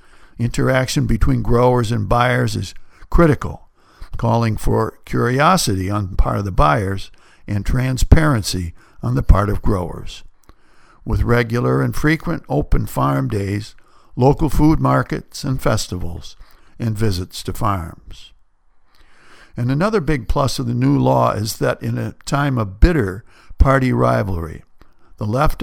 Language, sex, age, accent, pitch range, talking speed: English, male, 60-79, American, 100-135 Hz, 135 wpm